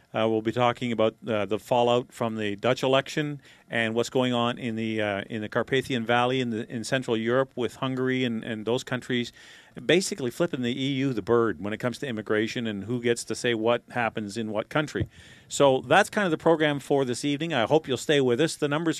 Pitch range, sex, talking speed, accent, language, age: 120-150 Hz, male, 225 wpm, American, English, 40-59